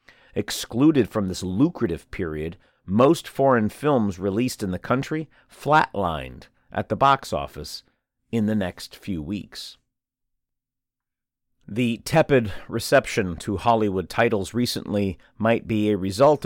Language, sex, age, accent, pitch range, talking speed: English, male, 50-69, American, 100-125 Hz, 120 wpm